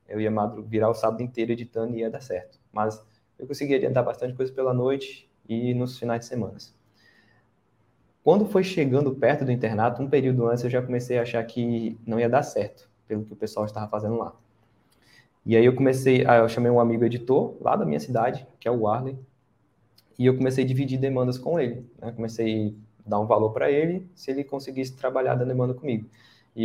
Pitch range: 110-130 Hz